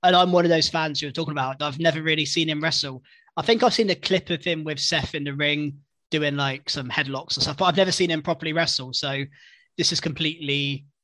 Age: 20-39